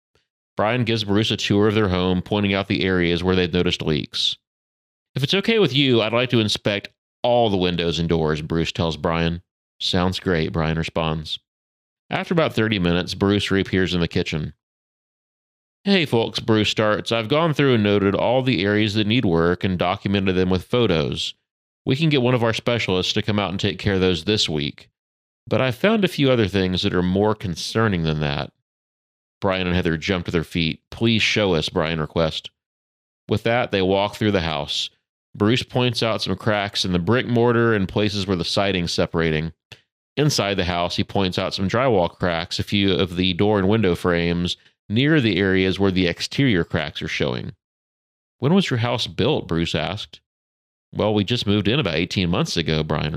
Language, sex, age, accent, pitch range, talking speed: English, male, 40-59, American, 85-115 Hz, 195 wpm